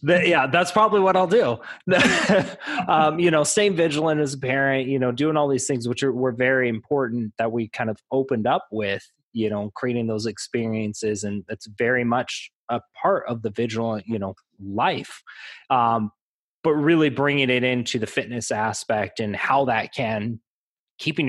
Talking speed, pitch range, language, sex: 180 wpm, 110-130 Hz, English, male